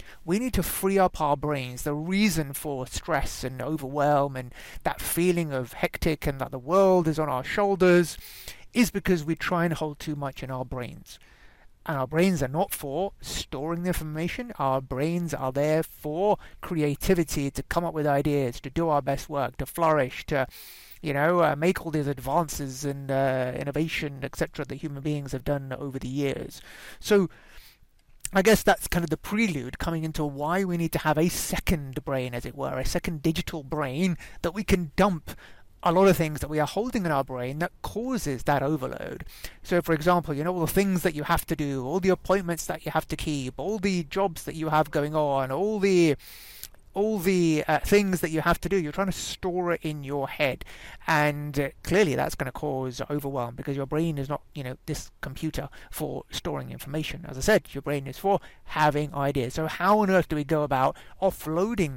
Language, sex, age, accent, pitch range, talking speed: English, male, 30-49, British, 140-180 Hz, 205 wpm